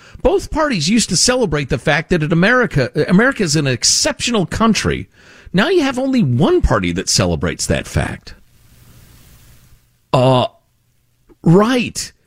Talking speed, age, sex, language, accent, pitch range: 125 wpm, 50-69, male, English, American, 185-280 Hz